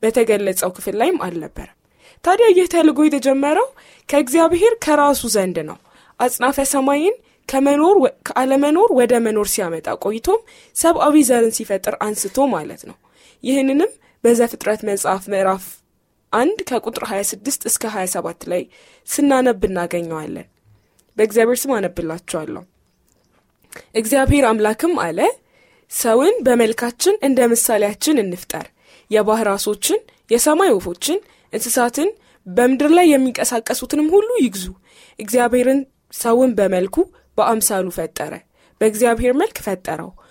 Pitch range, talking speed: 205-300 Hz, 90 wpm